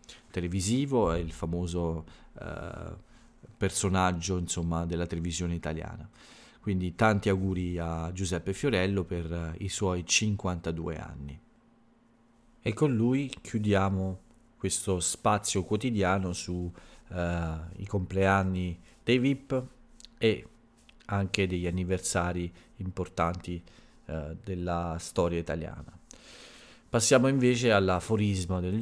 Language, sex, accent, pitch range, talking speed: Italian, male, native, 85-115 Hz, 95 wpm